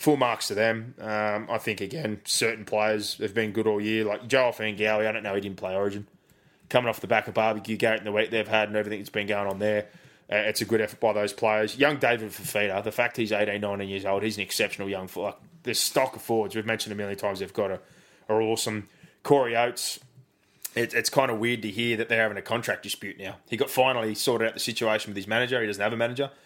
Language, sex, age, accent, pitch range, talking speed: English, male, 20-39, Australian, 105-115 Hz, 255 wpm